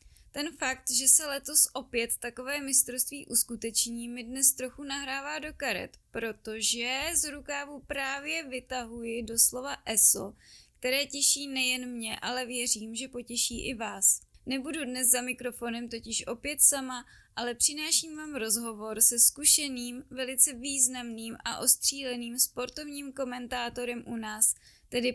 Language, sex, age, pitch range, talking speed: Czech, female, 20-39, 235-270 Hz, 130 wpm